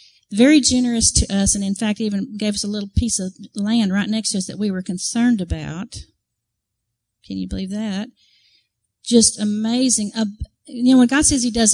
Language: English